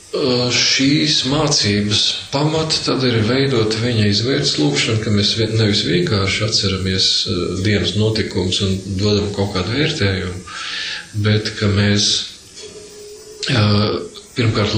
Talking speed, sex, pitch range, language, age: 95 wpm, male, 100-120 Hz, English, 40-59